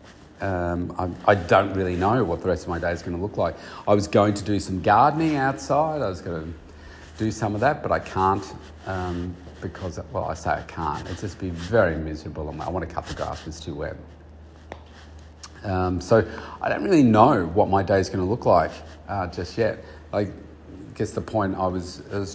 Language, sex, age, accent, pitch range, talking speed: English, male, 40-59, Australian, 85-100 Hz, 225 wpm